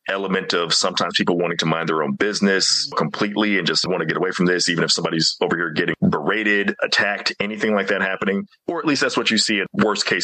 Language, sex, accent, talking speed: English, male, American, 240 wpm